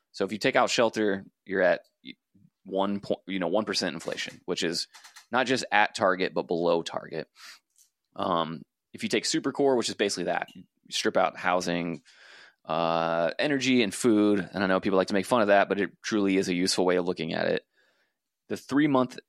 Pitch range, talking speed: 90-110 Hz, 200 wpm